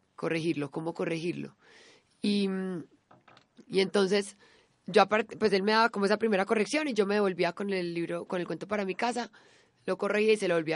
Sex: female